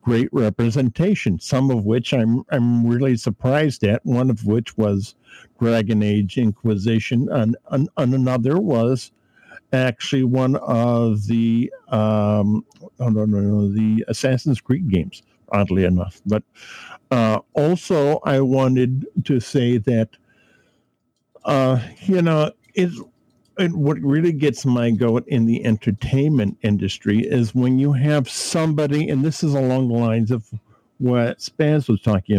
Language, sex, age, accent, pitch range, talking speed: English, male, 50-69, American, 110-135 Hz, 130 wpm